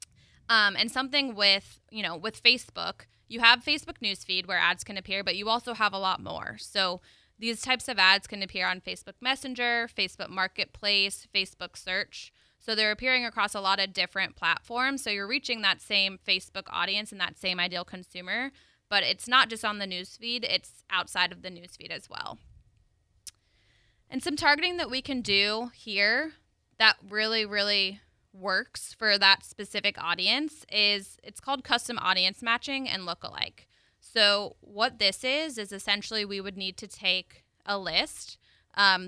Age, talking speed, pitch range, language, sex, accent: 20-39, 170 wpm, 190-235 Hz, English, female, American